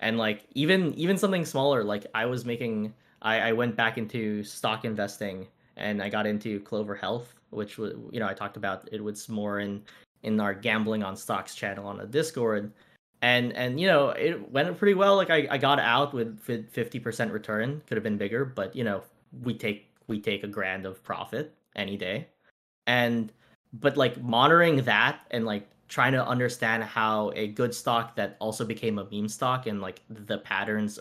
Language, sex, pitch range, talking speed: English, male, 105-125 Hz, 195 wpm